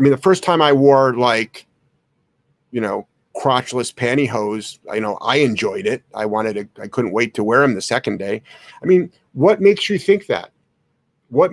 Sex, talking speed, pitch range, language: male, 195 wpm, 125-155 Hz, English